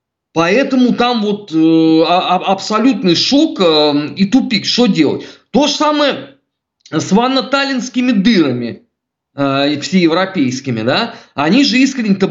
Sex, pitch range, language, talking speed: male, 150-235 Hz, Russian, 110 wpm